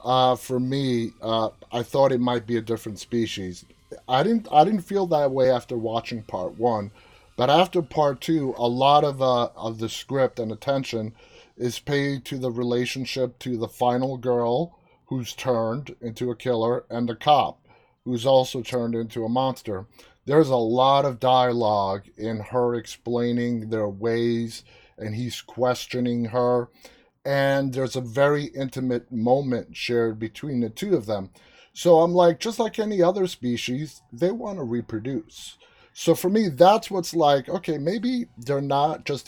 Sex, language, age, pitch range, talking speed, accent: male, English, 30-49, 120-145 Hz, 165 wpm, American